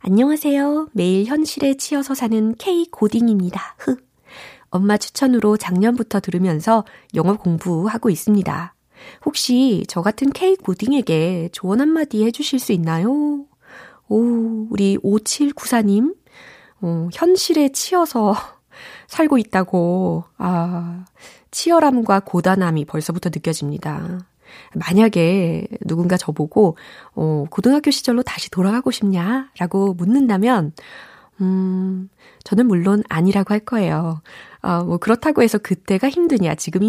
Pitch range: 175-250 Hz